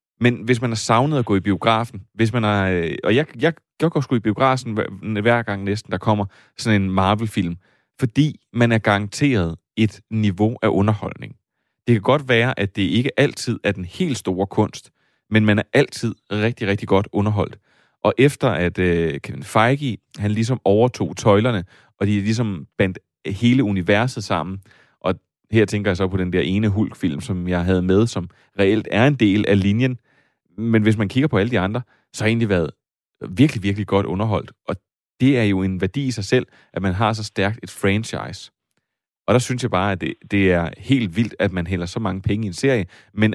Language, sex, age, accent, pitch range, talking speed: Danish, male, 30-49, native, 100-120 Hz, 200 wpm